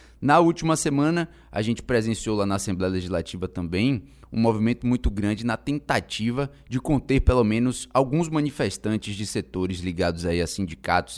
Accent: Brazilian